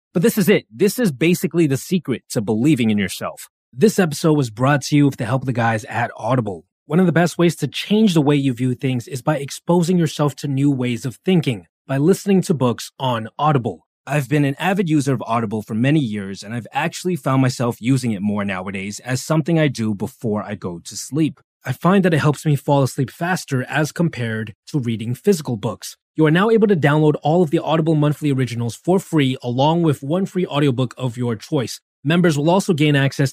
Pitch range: 125-165 Hz